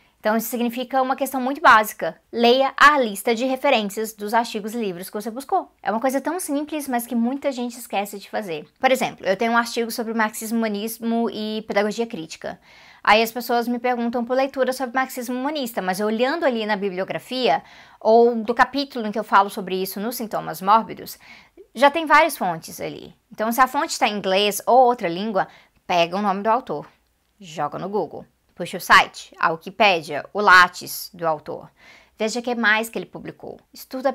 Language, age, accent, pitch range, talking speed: Portuguese, 20-39, Brazilian, 195-250 Hz, 195 wpm